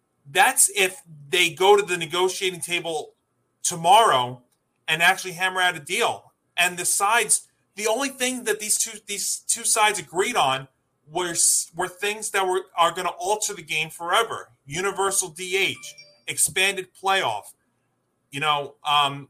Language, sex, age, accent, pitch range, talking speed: English, male, 40-59, American, 150-200 Hz, 150 wpm